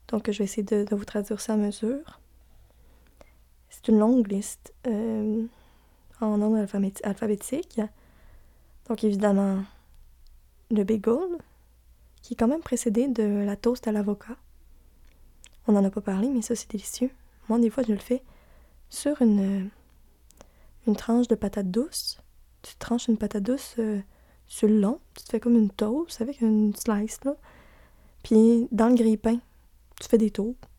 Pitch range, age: 200-235 Hz, 20-39